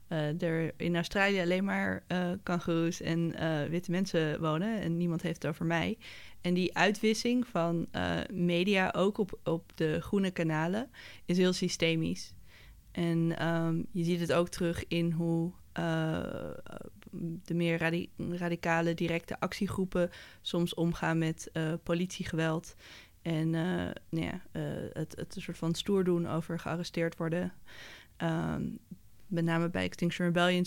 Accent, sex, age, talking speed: Dutch, female, 20-39, 140 wpm